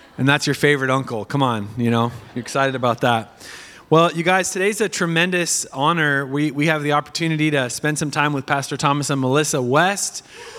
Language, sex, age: English, male, 30-49